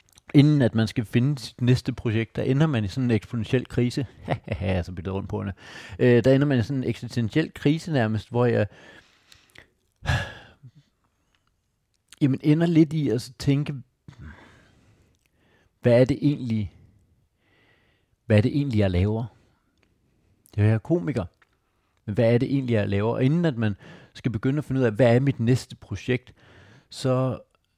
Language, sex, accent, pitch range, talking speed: Danish, male, native, 105-130 Hz, 160 wpm